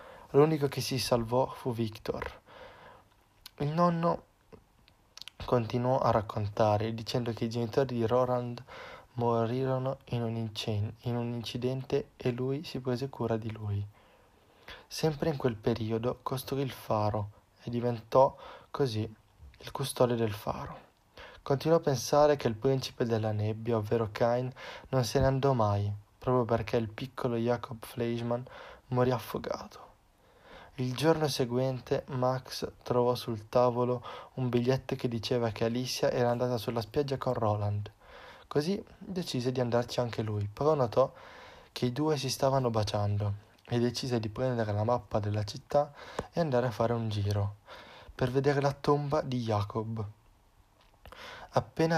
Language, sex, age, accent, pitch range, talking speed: Italian, male, 20-39, native, 115-135 Hz, 135 wpm